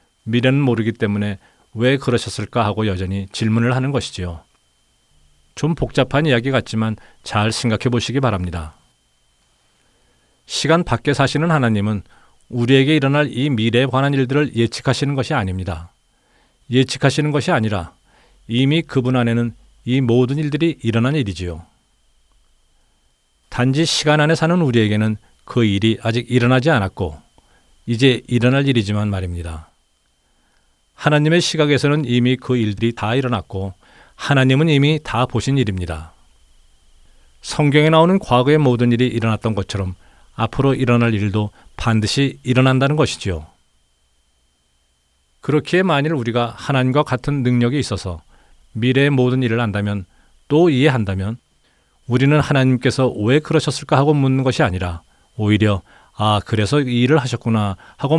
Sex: male